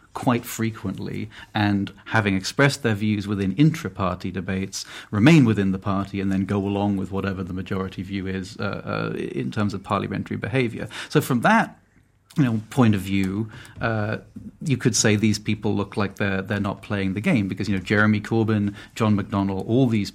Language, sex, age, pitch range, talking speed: English, male, 30-49, 100-110 Hz, 185 wpm